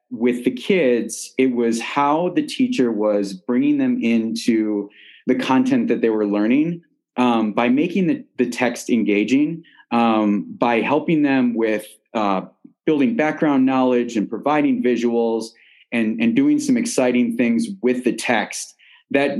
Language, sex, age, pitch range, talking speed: English, male, 30-49, 110-165 Hz, 145 wpm